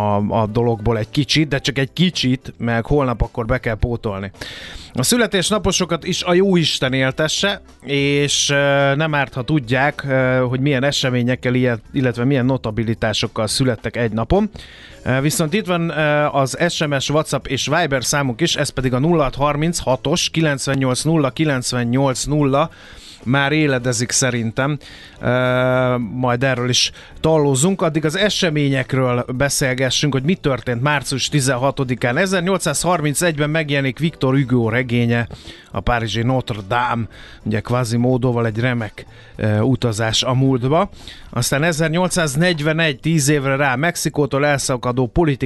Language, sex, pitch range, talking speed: Hungarian, male, 120-150 Hz, 125 wpm